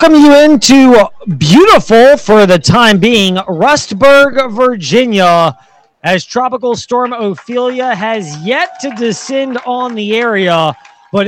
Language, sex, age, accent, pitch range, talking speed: English, male, 30-49, American, 180-245 Hz, 115 wpm